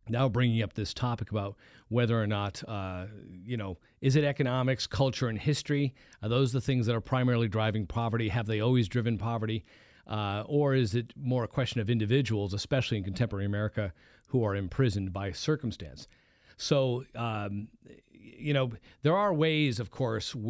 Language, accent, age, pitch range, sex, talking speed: English, American, 40-59, 110-135 Hz, male, 175 wpm